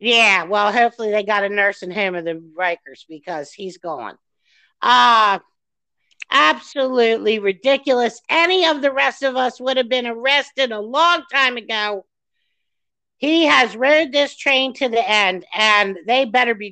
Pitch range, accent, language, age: 220-305 Hz, American, English, 50-69